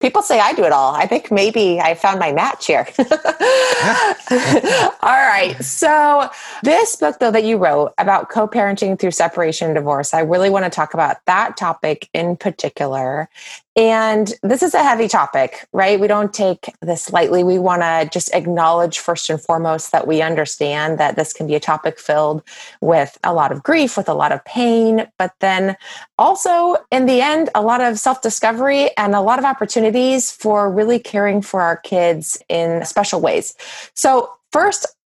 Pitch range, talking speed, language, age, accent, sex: 165-245 Hz, 180 wpm, English, 30-49, American, female